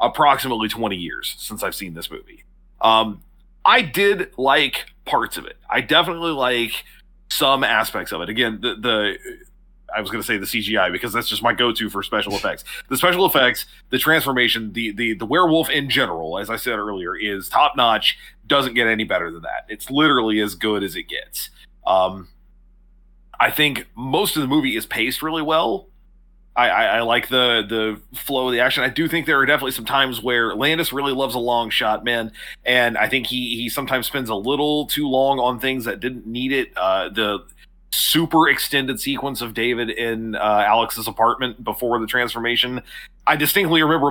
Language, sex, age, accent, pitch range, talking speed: English, male, 30-49, American, 110-140 Hz, 195 wpm